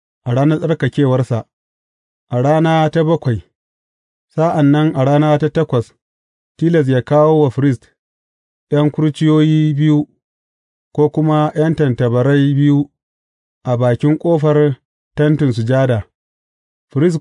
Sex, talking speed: male, 100 wpm